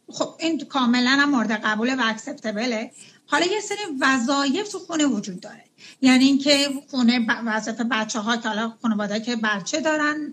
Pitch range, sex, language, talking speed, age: 230-285 Hz, female, Persian, 170 wpm, 30-49